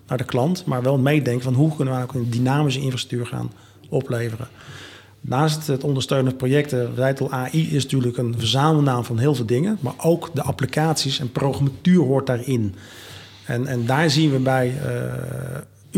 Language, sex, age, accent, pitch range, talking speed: Dutch, male, 40-59, Dutch, 120-145 Hz, 175 wpm